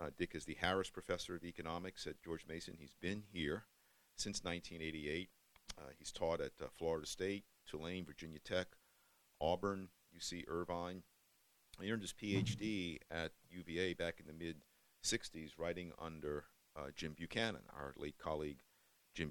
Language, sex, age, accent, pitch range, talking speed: English, male, 50-69, American, 75-90 Hz, 150 wpm